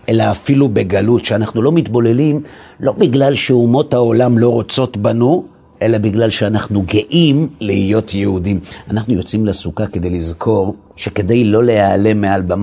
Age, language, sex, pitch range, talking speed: 50-69, Hebrew, male, 100-125 Hz, 135 wpm